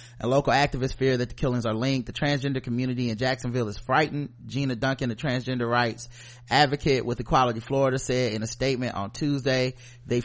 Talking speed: 180 wpm